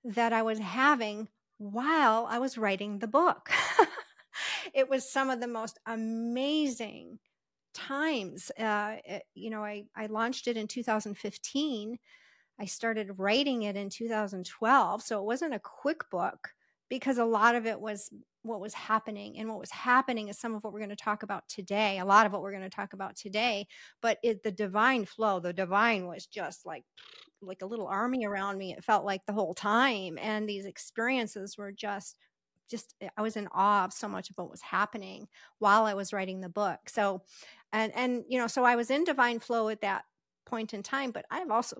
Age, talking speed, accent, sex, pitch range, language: 50-69, 195 wpm, American, female, 195-235 Hz, English